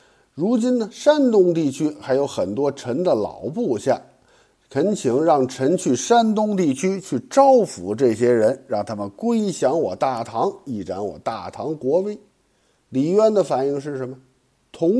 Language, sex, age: Chinese, male, 50-69